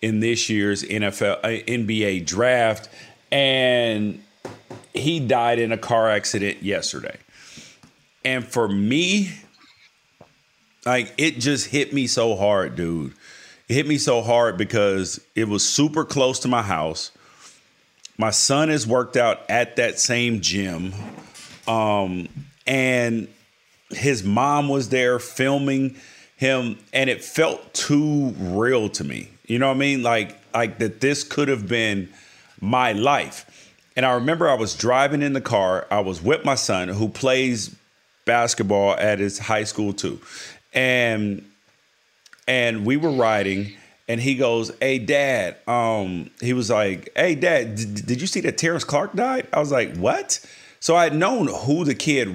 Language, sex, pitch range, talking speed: English, male, 105-135 Hz, 155 wpm